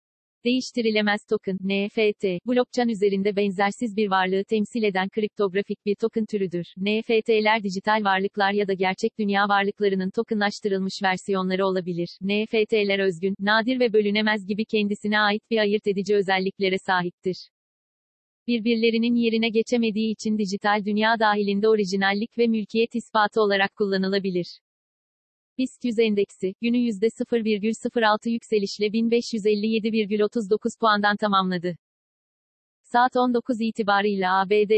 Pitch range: 195-225 Hz